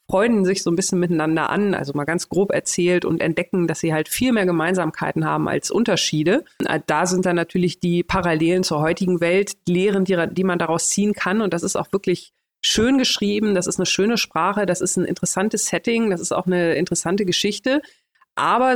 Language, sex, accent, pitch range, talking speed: German, female, German, 175-215 Hz, 210 wpm